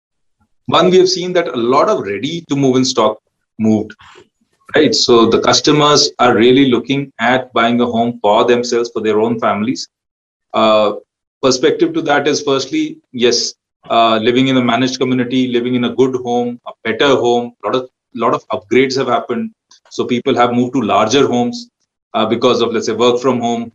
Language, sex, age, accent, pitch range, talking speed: Hindi, male, 30-49, native, 120-150 Hz, 185 wpm